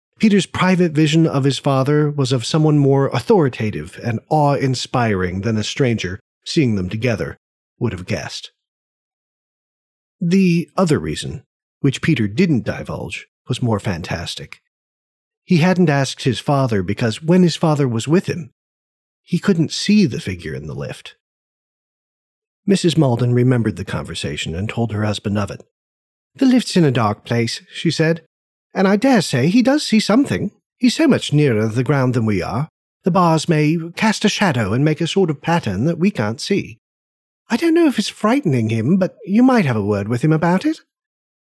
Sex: male